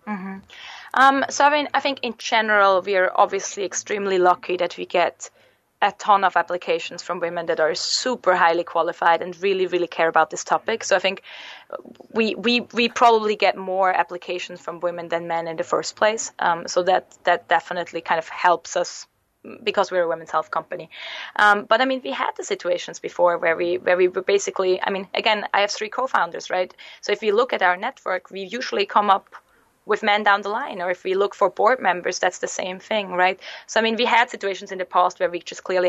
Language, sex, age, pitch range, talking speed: English, female, 20-39, 175-215 Hz, 220 wpm